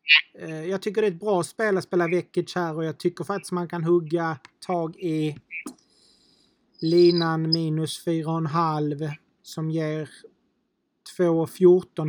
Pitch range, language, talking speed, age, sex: 155-180 Hz, Swedish, 130 wpm, 30-49, male